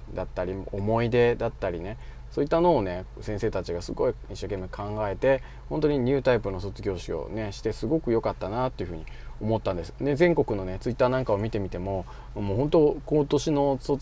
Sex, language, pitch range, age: male, Japanese, 100-135 Hz, 20-39